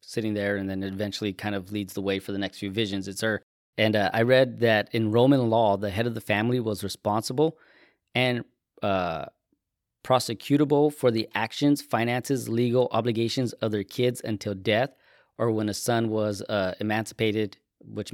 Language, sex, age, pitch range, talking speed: English, male, 20-39, 100-120 Hz, 180 wpm